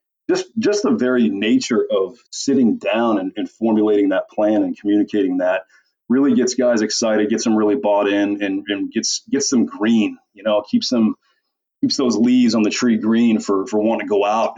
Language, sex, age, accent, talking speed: English, male, 30-49, American, 200 wpm